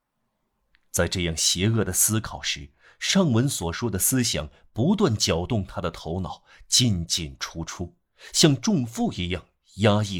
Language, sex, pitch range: Chinese, male, 85-115 Hz